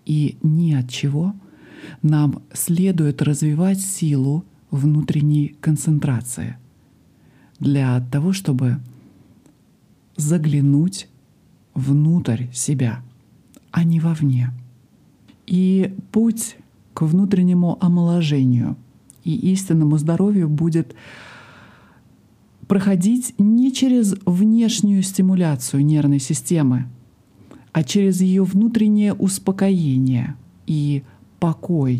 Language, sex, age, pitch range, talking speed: Russian, male, 50-69, 135-185 Hz, 80 wpm